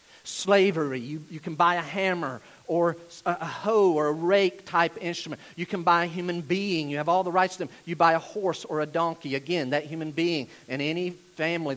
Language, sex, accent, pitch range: English, male, American, 150-200 Hz